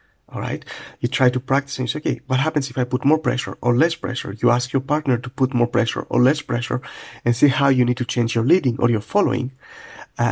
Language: English